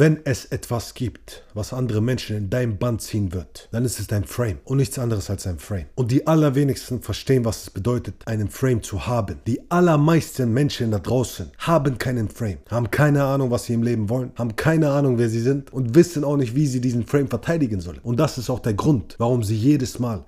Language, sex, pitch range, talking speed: German, male, 110-140 Hz, 225 wpm